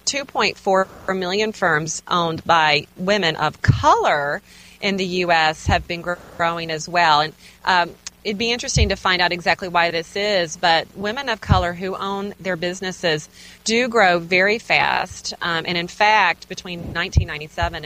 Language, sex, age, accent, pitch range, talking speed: English, female, 30-49, American, 155-195 Hz, 155 wpm